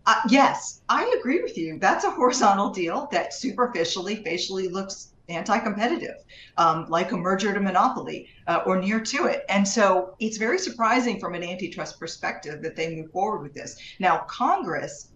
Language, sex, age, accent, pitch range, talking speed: English, female, 40-59, American, 160-220 Hz, 165 wpm